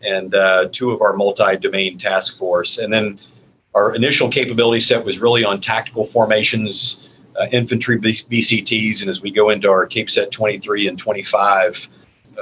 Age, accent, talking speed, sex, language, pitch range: 50-69, American, 165 wpm, male, English, 100-120 Hz